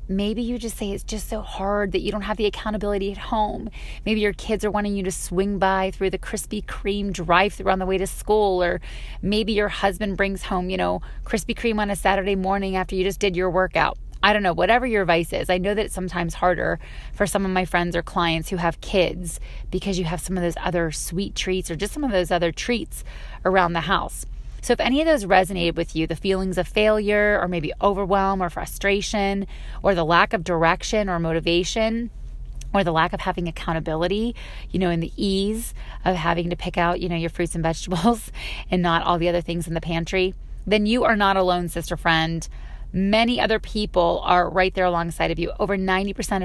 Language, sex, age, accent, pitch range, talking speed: English, female, 20-39, American, 170-205 Hz, 220 wpm